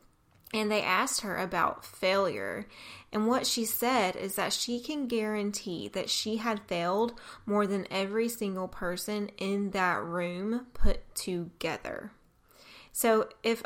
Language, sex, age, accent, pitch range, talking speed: English, female, 20-39, American, 180-220 Hz, 135 wpm